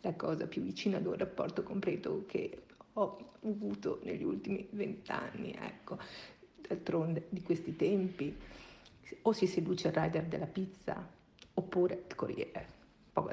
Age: 50-69